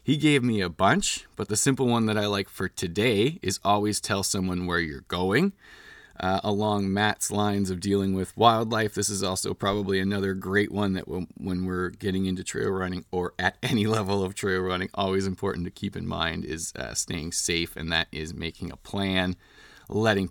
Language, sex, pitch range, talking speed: English, male, 95-110 Hz, 200 wpm